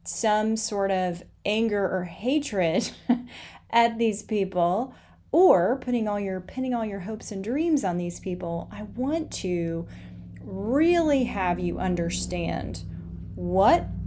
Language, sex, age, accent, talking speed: English, female, 30-49, American, 130 wpm